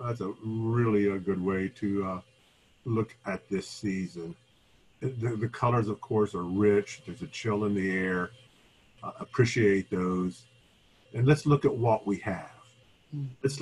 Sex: male